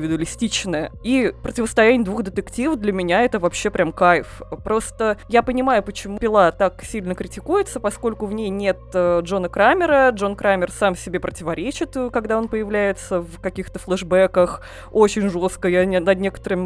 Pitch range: 180-225 Hz